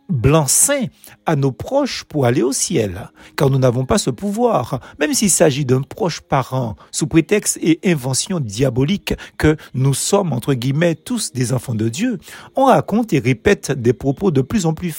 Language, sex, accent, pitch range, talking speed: French, male, French, 130-195 Hz, 190 wpm